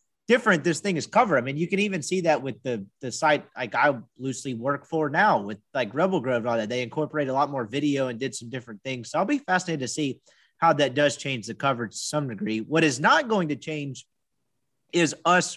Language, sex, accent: English, male, American